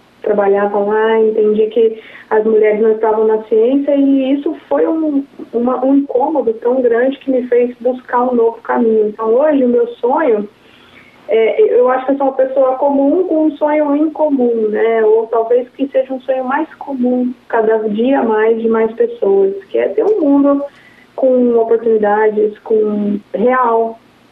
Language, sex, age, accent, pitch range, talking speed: English, female, 20-39, Brazilian, 220-270 Hz, 170 wpm